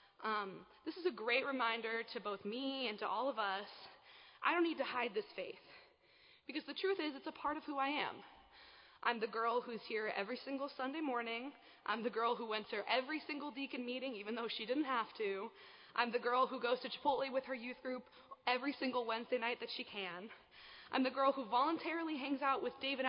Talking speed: 220 wpm